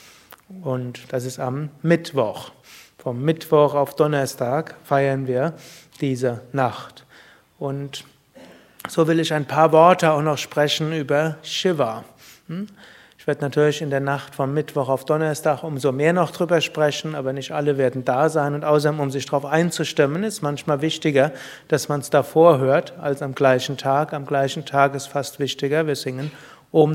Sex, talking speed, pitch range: male, 165 wpm, 140-170 Hz